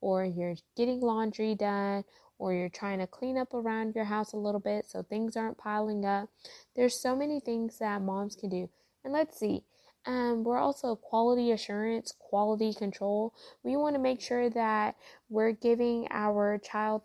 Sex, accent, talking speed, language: female, American, 175 wpm, English